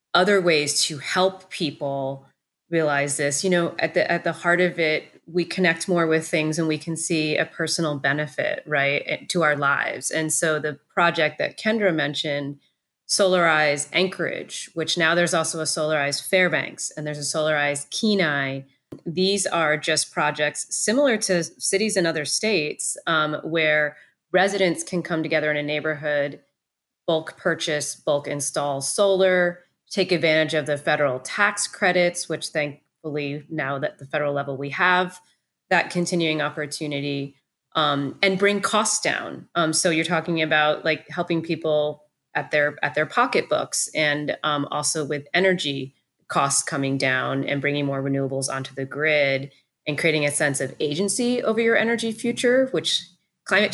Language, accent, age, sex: English, American, 30-49, female